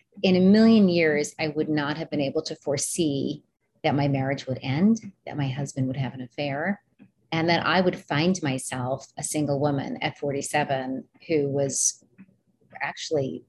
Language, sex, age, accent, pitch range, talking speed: English, female, 30-49, American, 140-170 Hz, 170 wpm